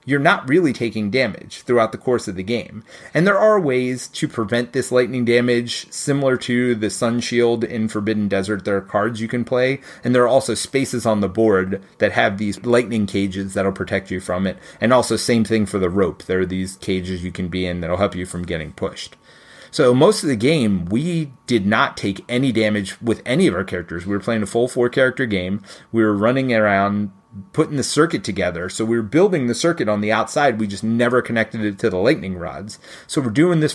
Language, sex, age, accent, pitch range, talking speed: English, male, 30-49, American, 100-130 Hz, 225 wpm